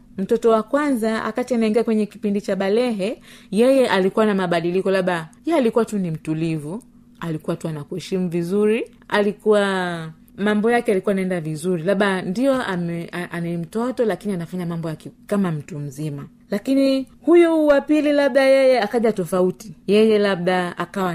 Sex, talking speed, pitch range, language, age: female, 140 wpm, 175-225 Hz, Swahili, 30-49